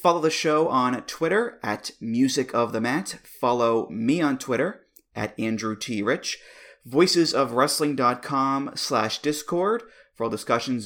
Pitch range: 110-140 Hz